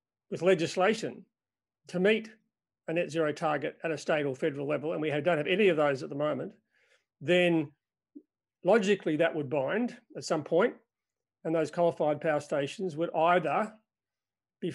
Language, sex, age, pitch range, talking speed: English, male, 40-59, 155-195 Hz, 165 wpm